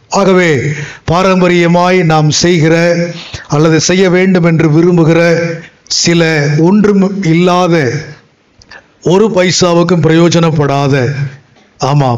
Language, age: Tamil, 50-69